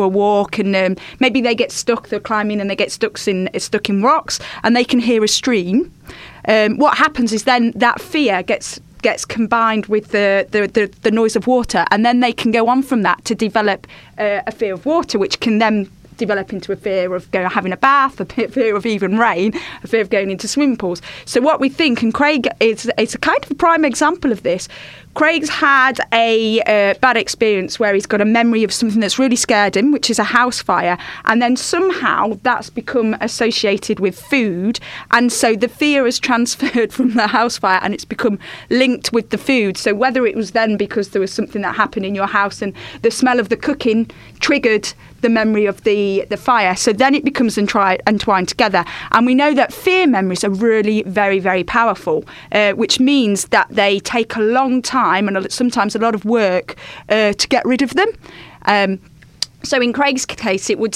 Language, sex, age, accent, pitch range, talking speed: English, female, 30-49, British, 205-250 Hz, 215 wpm